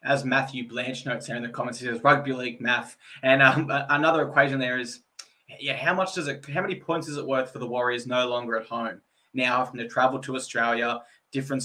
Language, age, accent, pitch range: English, 20-39, Australian, 125-140 Hz